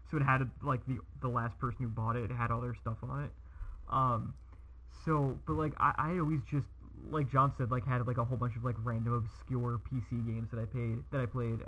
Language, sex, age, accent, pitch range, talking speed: English, male, 20-39, American, 115-135 Hz, 240 wpm